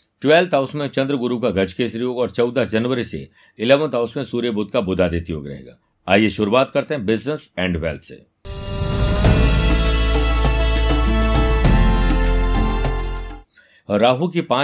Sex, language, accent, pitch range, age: male, Hindi, native, 95-130 Hz, 60-79